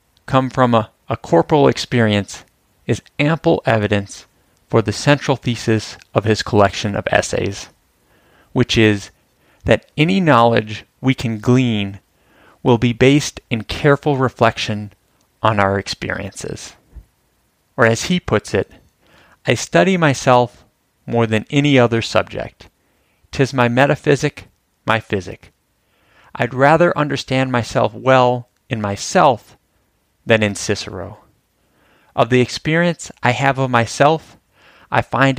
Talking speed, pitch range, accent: 120 wpm, 105-150 Hz, American